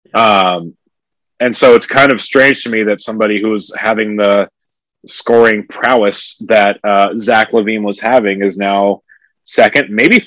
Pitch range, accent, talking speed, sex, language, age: 100-120 Hz, American, 150 wpm, male, English, 30-49